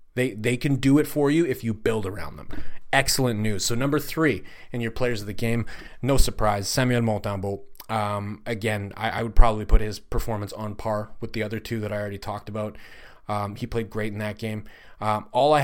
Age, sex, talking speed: 30-49, male, 220 wpm